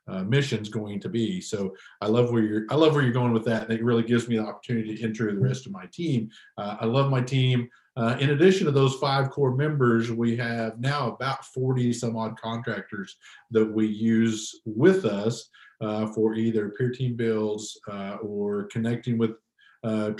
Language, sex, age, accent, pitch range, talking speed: English, male, 50-69, American, 110-145 Hz, 200 wpm